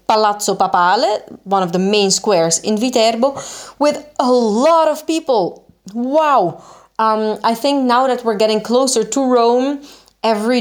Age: 30-49